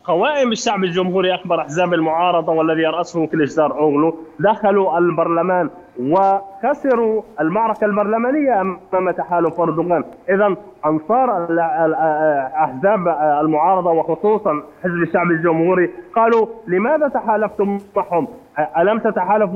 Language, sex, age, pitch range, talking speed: Arabic, male, 20-39, 165-205 Hz, 100 wpm